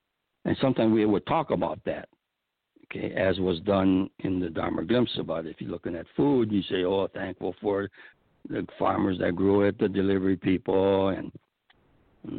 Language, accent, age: English, American, 60-79